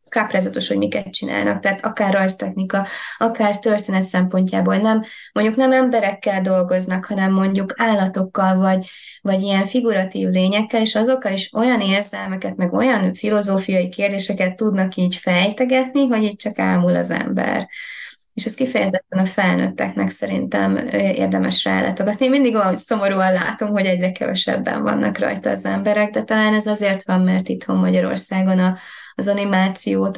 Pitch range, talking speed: 180-205 Hz, 145 wpm